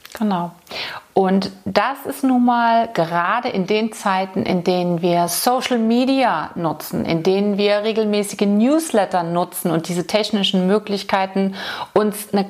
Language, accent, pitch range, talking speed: German, German, 195-245 Hz, 135 wpm